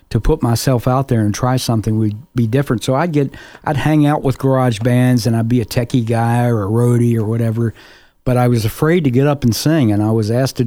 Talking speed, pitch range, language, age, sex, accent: 255 wpm, 115-135 Hz, English, 50-69, male, American